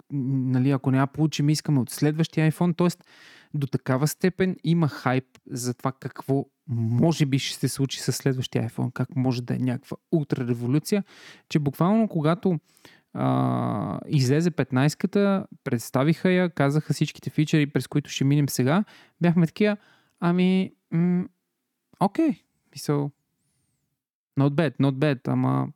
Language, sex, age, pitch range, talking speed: Bulgarian, male, 20-39, 135-165 Hz, 135 wpm